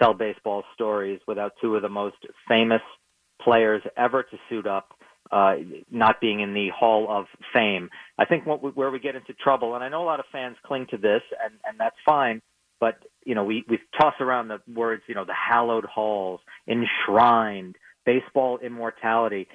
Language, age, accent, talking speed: English, 40-59, American, 190 wpm